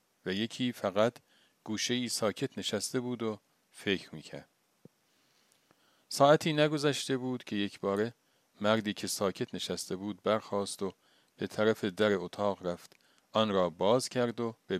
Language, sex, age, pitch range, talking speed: Persian, male, 40-59, 95-120 Hz, 140 wpm